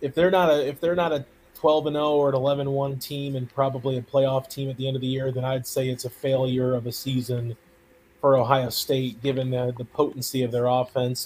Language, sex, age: English, male, 30-49